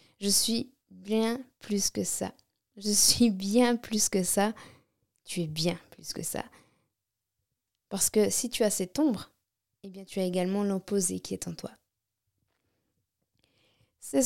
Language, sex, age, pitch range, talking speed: French, female, 20-39, 185-245 Hz, 150 wpm